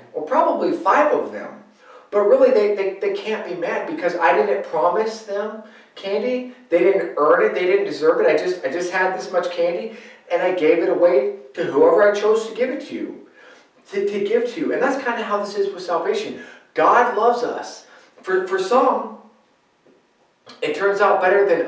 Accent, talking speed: American, 205 wpm